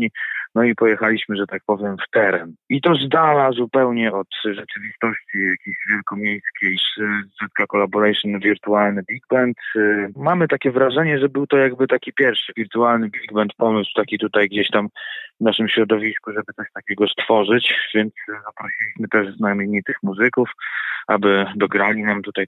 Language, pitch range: Polish, 105-135 Hz